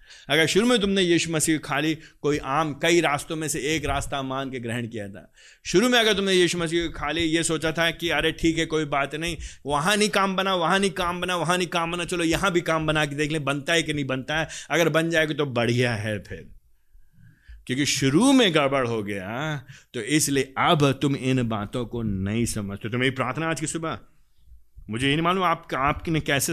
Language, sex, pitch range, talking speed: Hindi, male, 140-180 Hz, 220 wpm